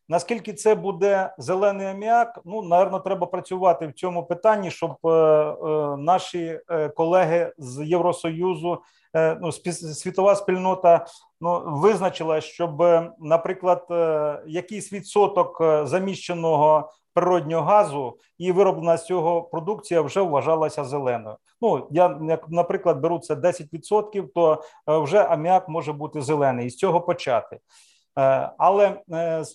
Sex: male